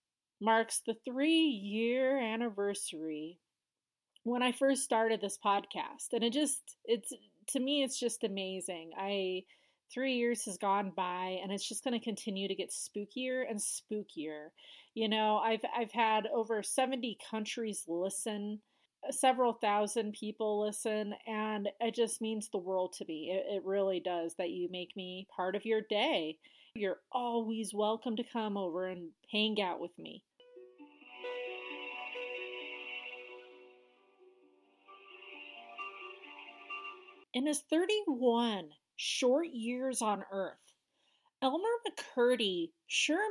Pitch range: 190-255 Hz